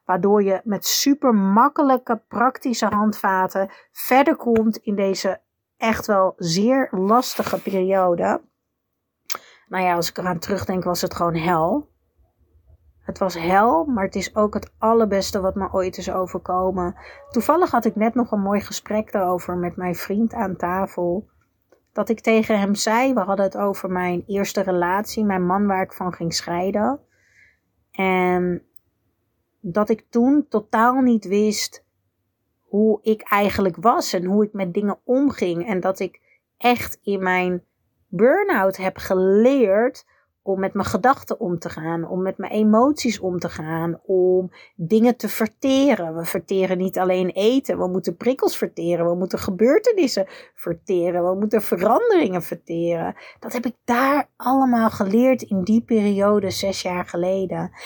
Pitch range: 185-225 Hz